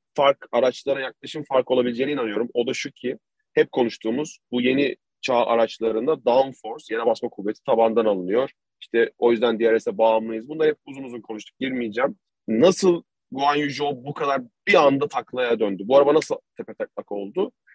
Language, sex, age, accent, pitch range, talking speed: Turkish, male, 30-49, native, 125-170 Hz, 165 wpm